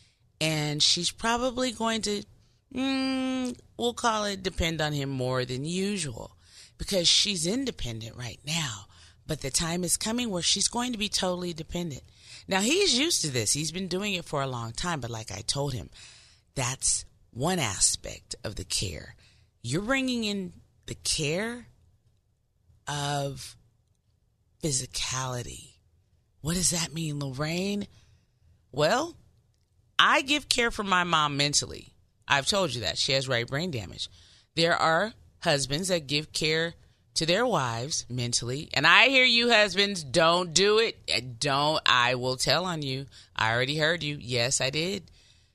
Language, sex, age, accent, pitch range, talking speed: English, female, 30-49, American, 115-180 Hz, 155 wpm